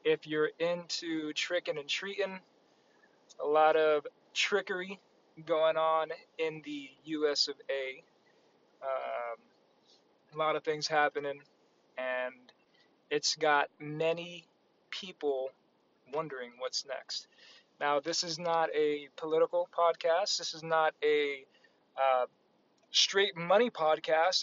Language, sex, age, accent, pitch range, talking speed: English, male, 20-39, American, 145-195 Hz, 110 wpm